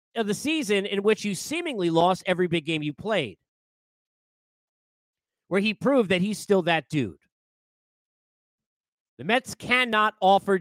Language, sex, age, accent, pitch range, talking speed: English, male, 40-59, American, 170-220 Hz, 140 wpm